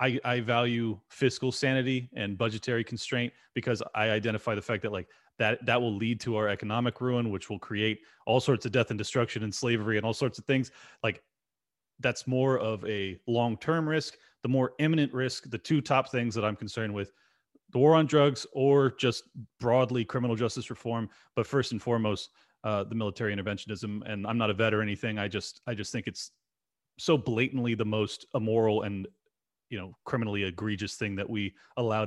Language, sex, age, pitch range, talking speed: English, male, 30-49, 110-135 Hz, 195 wpm